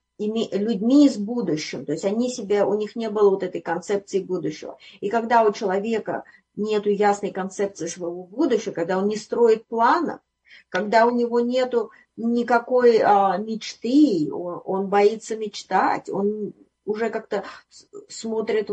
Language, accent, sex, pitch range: Russian, native, female, 195-235 Hz